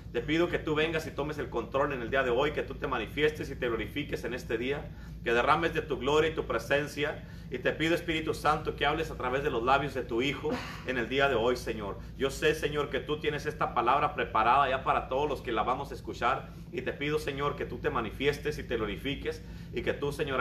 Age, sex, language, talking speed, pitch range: 40-59, male, Spanish, 255 wpm, 125-155 Hz